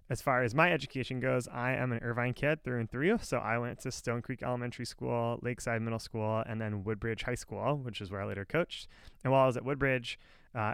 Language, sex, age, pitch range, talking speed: English, male, 20-39, 110-125 Hz, 240 wpm